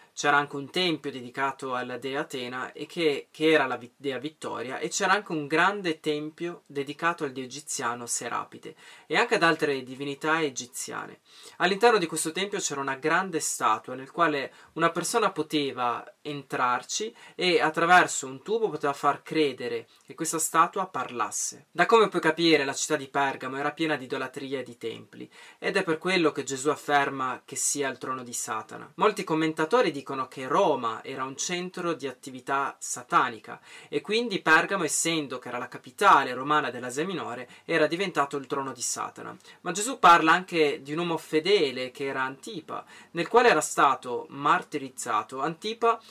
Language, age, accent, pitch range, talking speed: Italian, 20-39, native, 135-170 Hz, 170 wpm